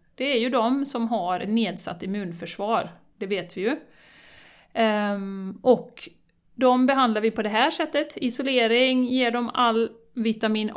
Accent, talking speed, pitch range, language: native, 140 wpm, 210-245 Hz, Swedish